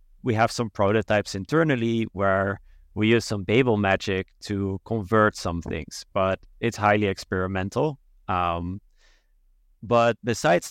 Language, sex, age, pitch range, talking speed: English, male, 30-49, 95-110 Hz, 125 wpm